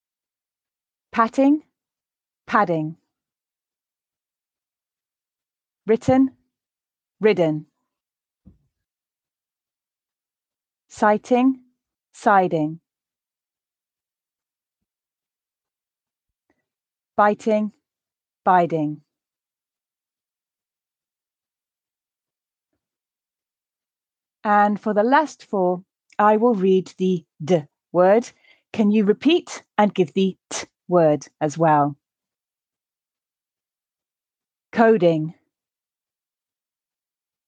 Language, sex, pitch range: English, female, 165-220 Hz